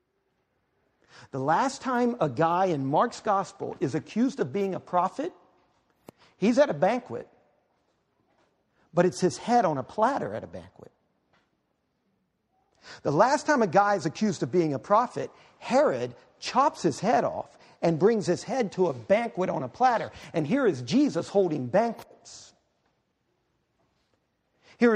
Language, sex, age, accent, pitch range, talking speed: English, male, 50-69, American, 175-230 Hz, 145 wpm